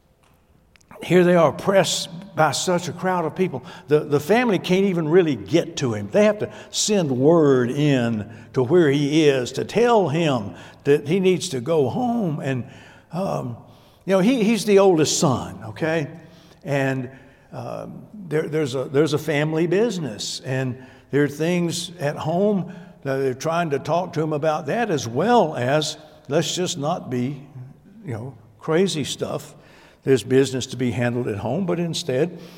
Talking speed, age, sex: 170 wpm, 60-79, male